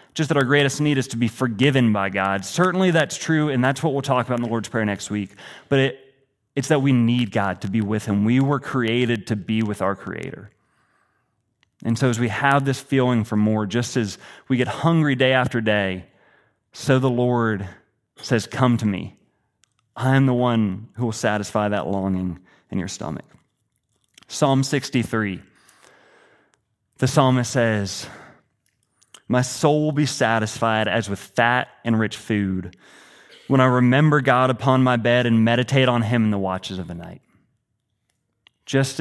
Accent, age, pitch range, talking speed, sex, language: American, 30-49, 110-130 Hz, 175 wpm, male, English